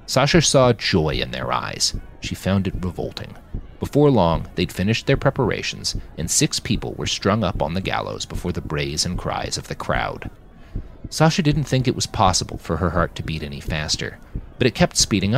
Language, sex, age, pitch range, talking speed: English, male, 30-49, 80-120 Hz, 195 wpm